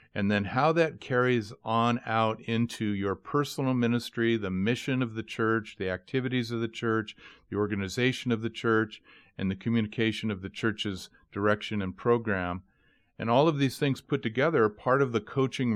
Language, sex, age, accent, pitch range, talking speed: English, male, 50-69, American, 105-125 Hz, 180 wpm